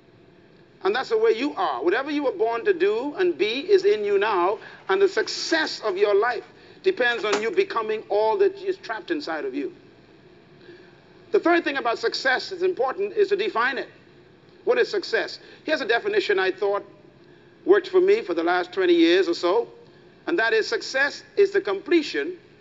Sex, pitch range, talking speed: male, 310-405 Hz, 190 wpm